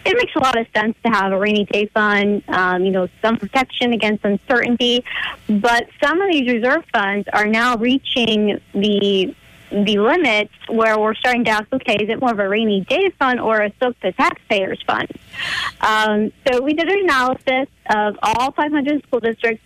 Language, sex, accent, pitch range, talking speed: English, female, American, 210-260 Hz, 190 wpm